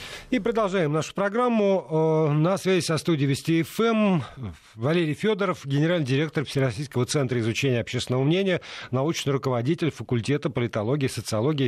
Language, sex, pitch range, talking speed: Russian, male, 115-150 Hz, 125 wpm